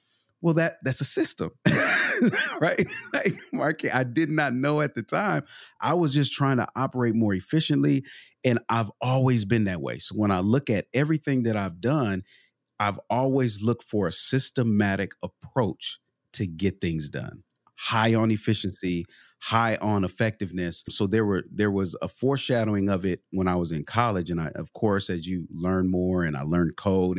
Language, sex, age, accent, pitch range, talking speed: English, male, 30-49, American, 95-125 Hz, 180 wpm